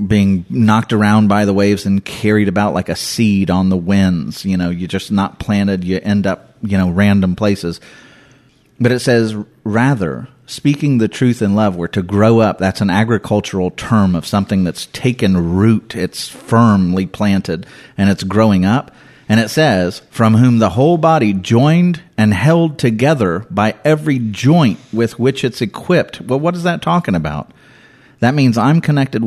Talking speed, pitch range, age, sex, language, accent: 175 wpm, 100-125 Hz, 30-49, male, English, American